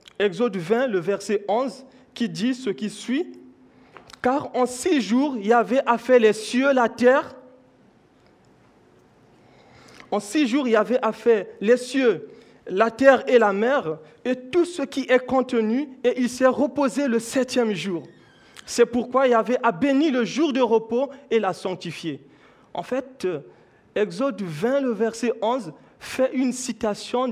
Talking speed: 150 wpm